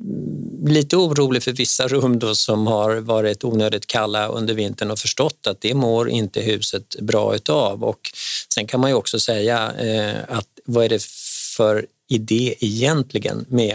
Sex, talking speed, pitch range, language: male, 160 wpm, 105-125 Hz, Swedish